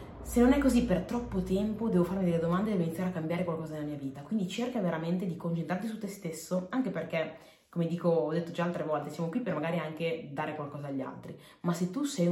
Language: Italian